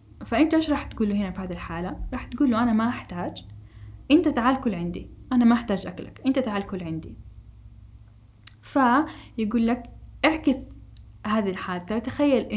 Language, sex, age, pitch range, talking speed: Arabic, female, 10-29, 195-250 Hz, 145 wpm